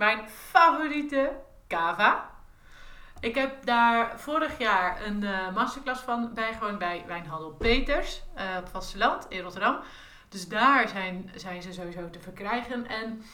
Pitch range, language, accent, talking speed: 190-235 Hz, Dutch, Dutch, 135 wpm